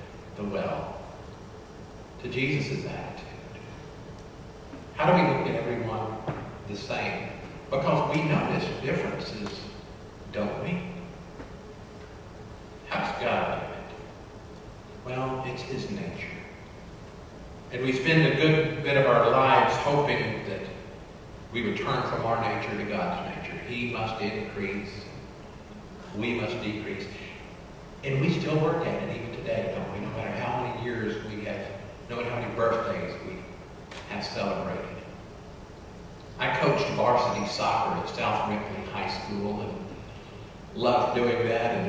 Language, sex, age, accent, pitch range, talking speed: English, male, 50-69, American, 110-140 Hz, 130 wpm